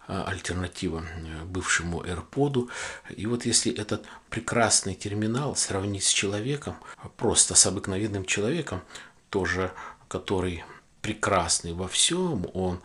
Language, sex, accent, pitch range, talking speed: Russian, male, native, 85-105 Hz, 105 wpm